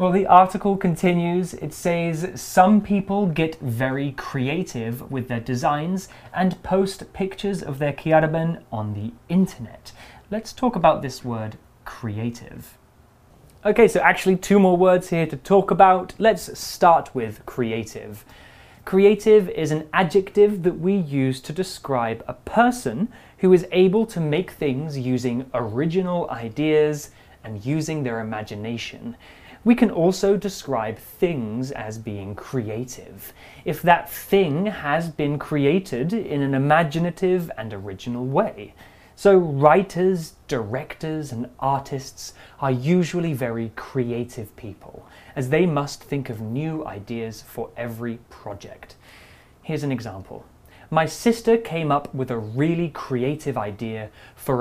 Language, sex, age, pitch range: Chinese, male, 20-39, 120-180 Hz